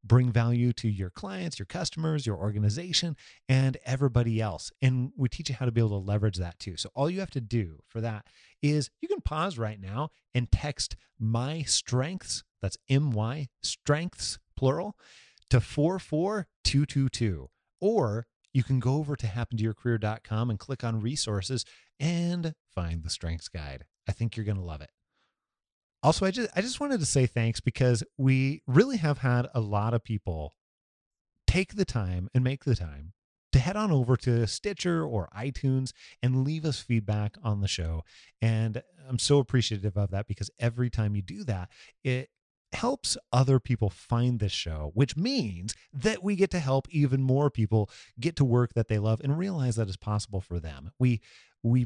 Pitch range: 105-135 Hz